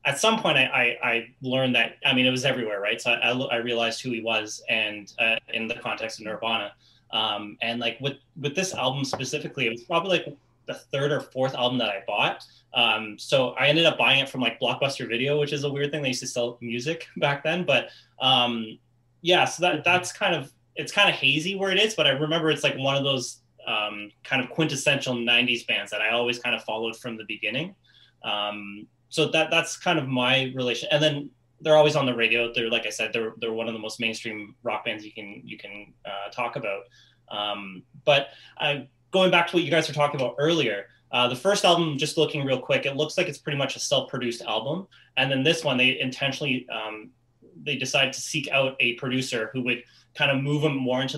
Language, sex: English, male